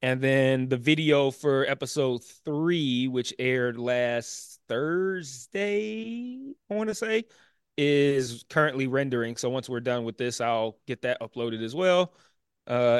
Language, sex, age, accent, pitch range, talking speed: English, male, 20-39, American, 140-215 Hz, 145 wpm